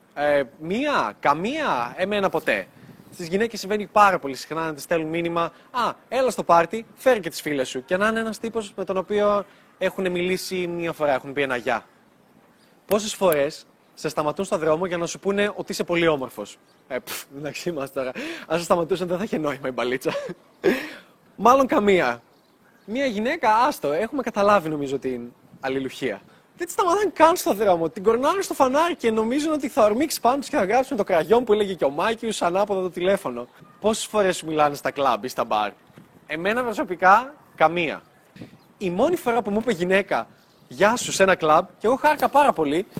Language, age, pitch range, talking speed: Greek, 20-39, 160-220 Hz, 190 wpm